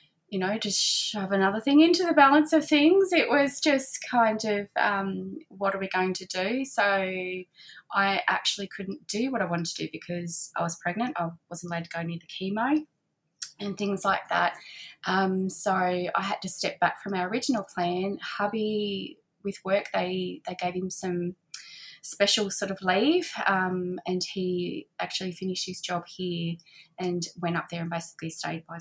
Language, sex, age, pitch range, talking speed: English, female, 20-39, 175-200 Hz, 185 wpm